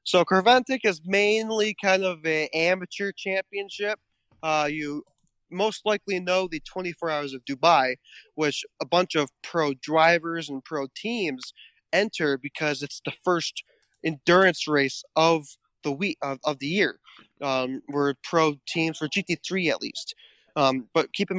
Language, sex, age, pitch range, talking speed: English, male, 20-39, 145-180 Hz, 150 wpm